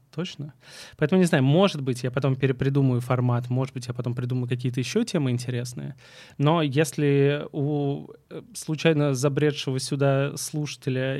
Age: 20-39